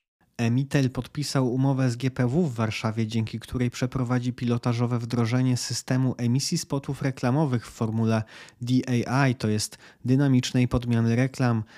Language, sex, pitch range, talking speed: Polish, male, 115-130 Hz, 120 wpm